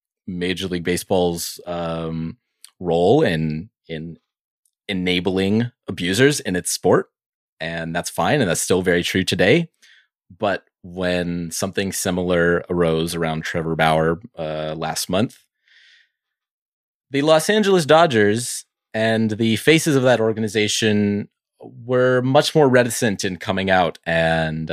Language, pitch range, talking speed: English, 85-125 Hz, 120 wpm